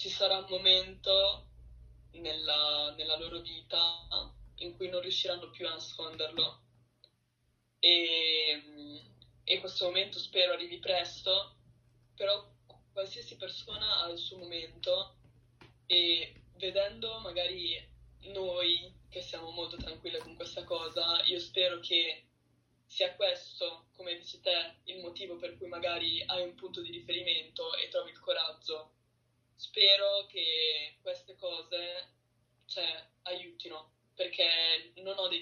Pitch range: 155-185 Hz